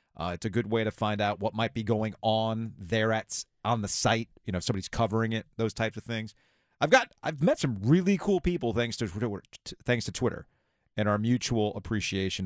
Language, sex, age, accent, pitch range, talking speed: English, male, 40-59, American, 100-135 Hz, 215 wpm